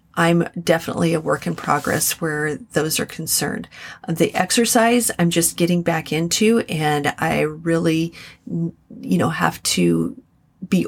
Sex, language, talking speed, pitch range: female, English, 140 wpm, 160-185 Hz